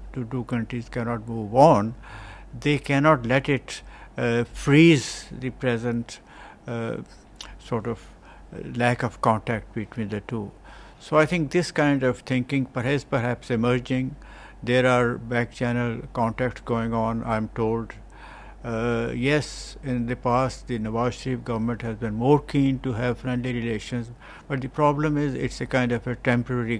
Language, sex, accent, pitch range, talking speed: English, male, Indian, 115-130 Hz, 150 wpm